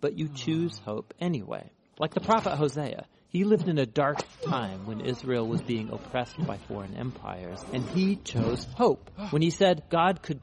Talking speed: 185 wpm